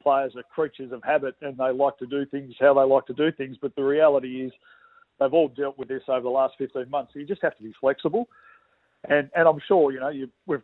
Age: 40-59